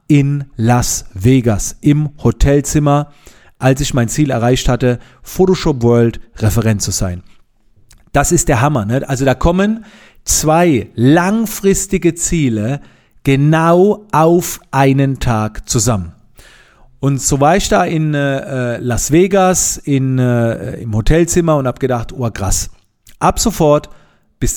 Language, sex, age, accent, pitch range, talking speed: German, male, 40-59, German, 120-160 Hz, 125 wpm